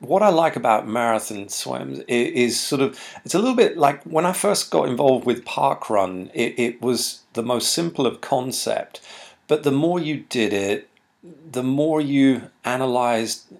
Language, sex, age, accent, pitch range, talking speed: English, male, 40-59, British, 115-145 Hz, 170 wpm